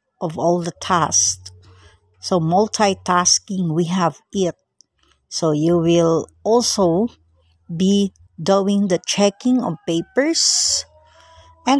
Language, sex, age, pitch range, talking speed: English, female, 60-79, 165-225 Hz, 100 wpm